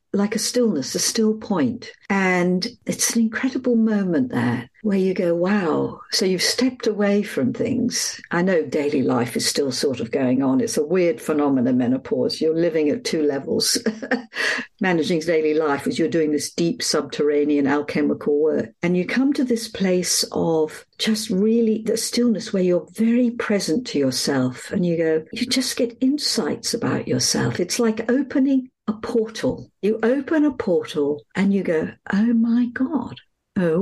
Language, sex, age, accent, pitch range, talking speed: English, female, 60-79, British, 180-250 Hz, 170 wpm